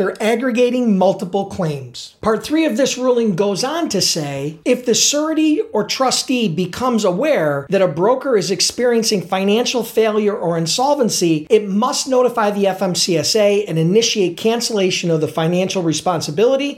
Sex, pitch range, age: male, 180-230 Hz, 40-59